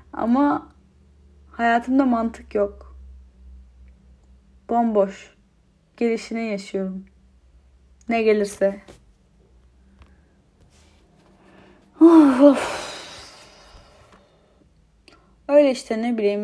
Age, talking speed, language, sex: 10-29, 50 wpm, Turkish, female